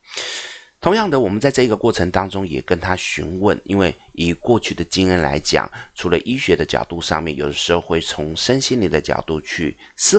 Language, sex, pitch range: Chinese, male, 80-110 Hz